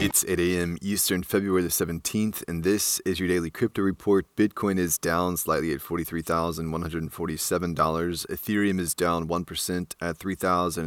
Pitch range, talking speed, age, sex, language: 80-95 Hz, 200 wpm, 30-49, male, English